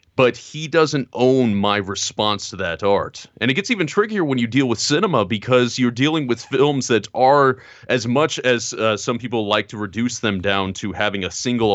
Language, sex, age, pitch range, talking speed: English, male, 30-49, 100-130 Hz, 210 wpm